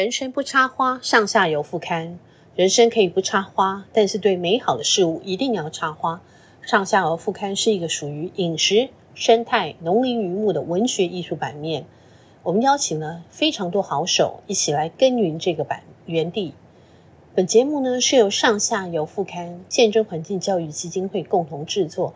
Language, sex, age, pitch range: Chinese, female, 30-49, 165-215 Hz